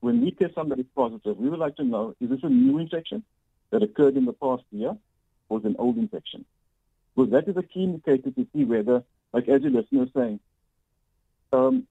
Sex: male